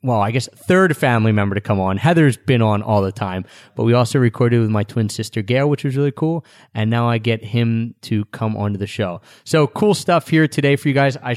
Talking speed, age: 250 wpm, 30-49